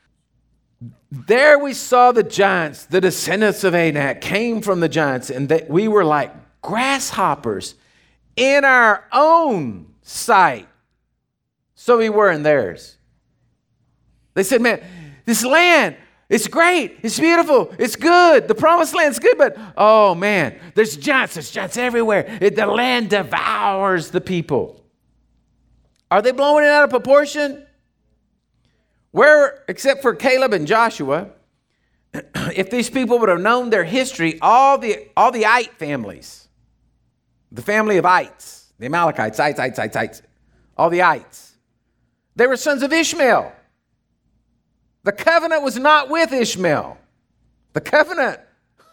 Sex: male